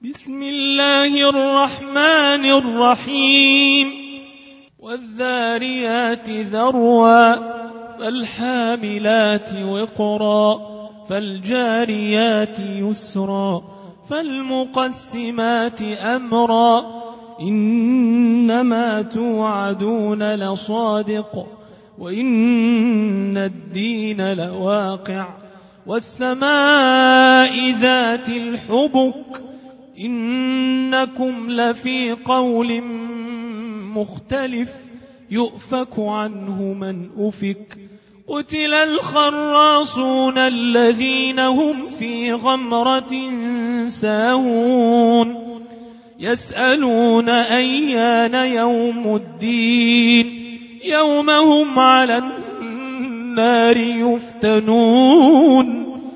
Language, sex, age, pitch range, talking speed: Arabic, male, 30-49, 220-260 Hz, 45 wpm